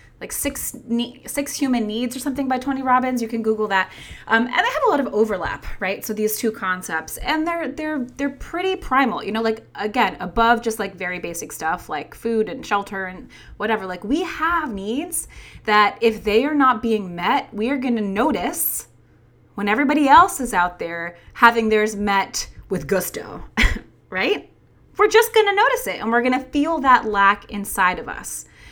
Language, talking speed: English, 195 wpm